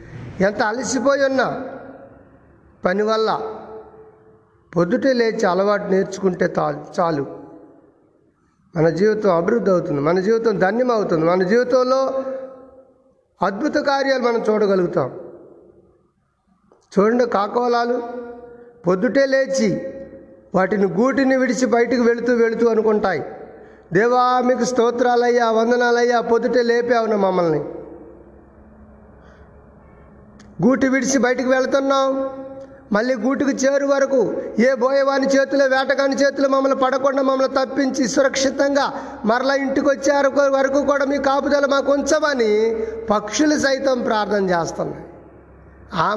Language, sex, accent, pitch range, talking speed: Telugu, male, native, 195-270 Hz, 95 wpm